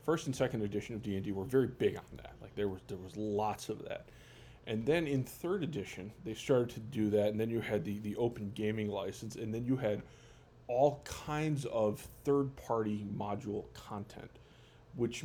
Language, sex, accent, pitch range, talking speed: English, male, American, 105-125 Hz, 195 wpm